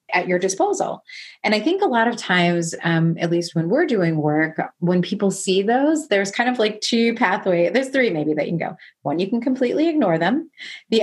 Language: English